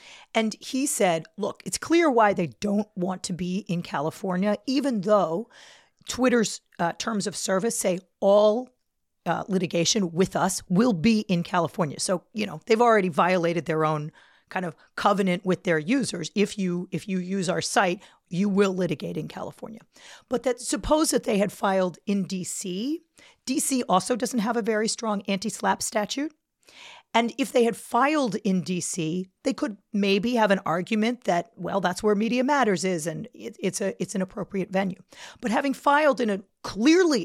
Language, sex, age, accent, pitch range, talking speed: English, female, 40-59, American, 180-235 Hz, 175 wpm